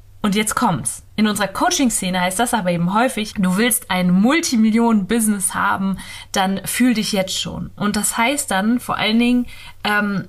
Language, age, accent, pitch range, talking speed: German, 20-39, German, 185-230 Hz, 170 wpm